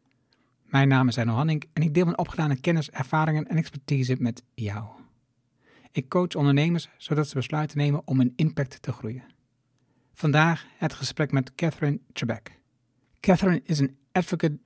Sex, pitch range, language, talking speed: male, 130-155 Hz, Dutch, 155 wpm